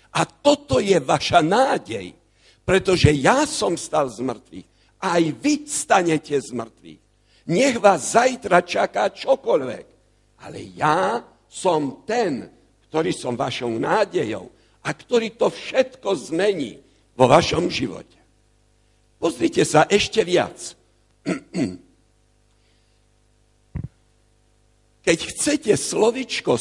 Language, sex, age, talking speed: Slovak, male, 60-79, 95 wpm